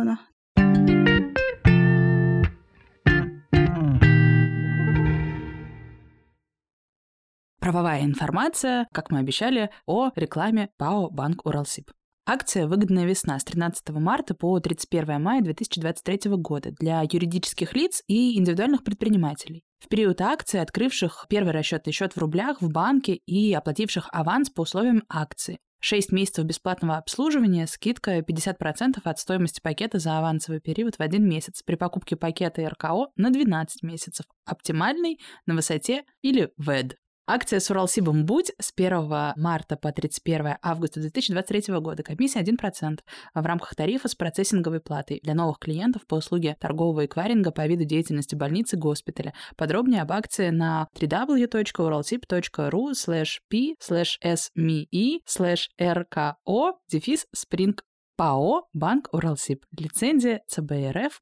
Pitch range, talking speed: 155-205 Hz, 115 wpm